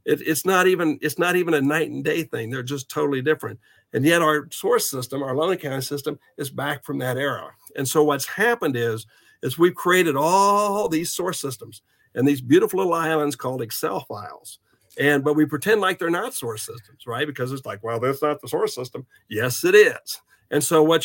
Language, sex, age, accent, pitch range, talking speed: English, male, 60-79, American, 125-160 Hz, 215 wpm